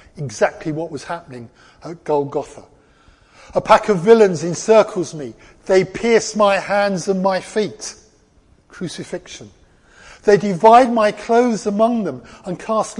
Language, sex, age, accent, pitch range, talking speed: English, male, 50-69, British, 145-210 Hz, 130 wpm